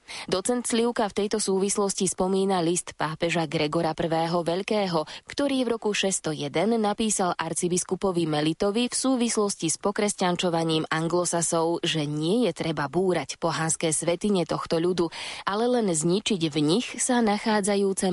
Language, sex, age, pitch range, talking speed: Slovak, female, 20-39, 165-210 Hz, 130 wpm